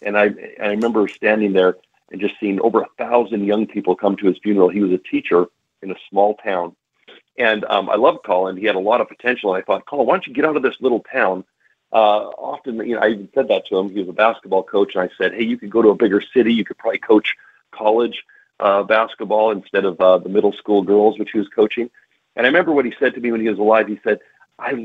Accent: American